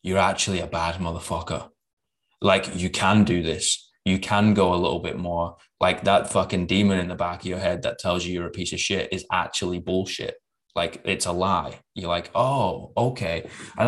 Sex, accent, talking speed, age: male, British, 205 wpm, 20-39